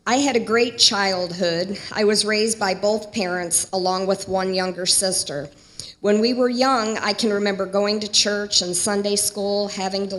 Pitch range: 190-285 Hz